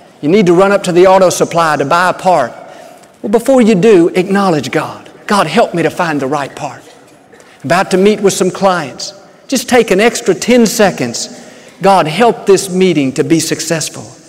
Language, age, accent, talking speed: English, 50-69, American, 195 wpm